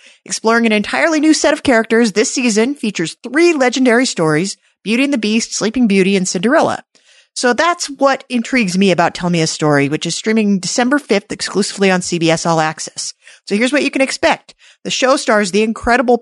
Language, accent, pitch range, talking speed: English, American, 175-250 Hz, 190 wpm